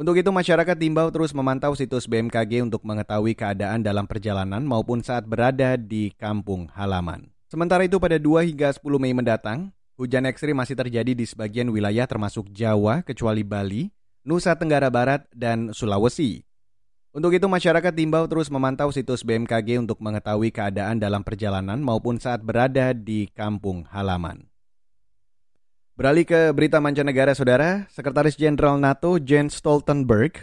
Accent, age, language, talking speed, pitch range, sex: native, 30-49, Indonesian, 140 wpm, 110-145 Hz, male